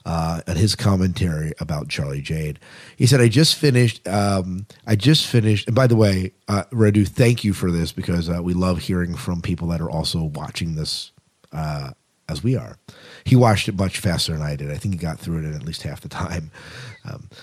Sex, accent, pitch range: male, American, 95-125 Hz